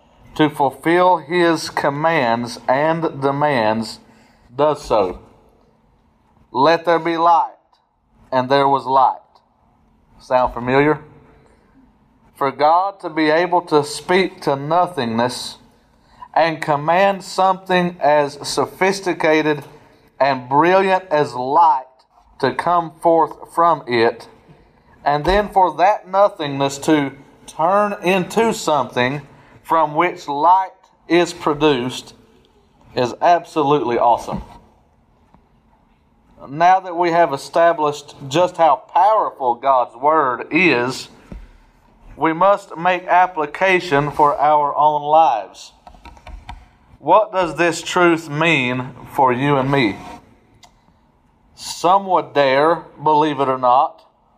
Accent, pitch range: American, 140-175 Hz